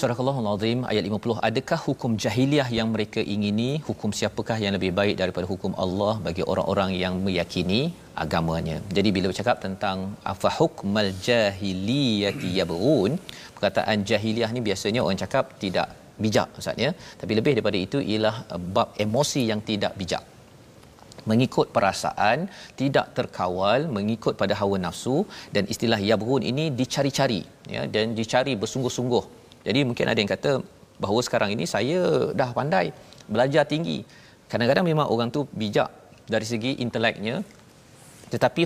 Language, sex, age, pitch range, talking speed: Malayalam, male, 40-59, 105-130 Hz, 140 wpm